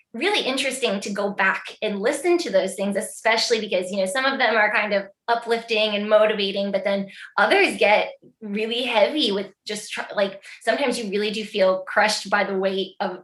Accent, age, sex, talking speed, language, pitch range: American, 20-39, female, 190 wpm, English, 195-225 Hz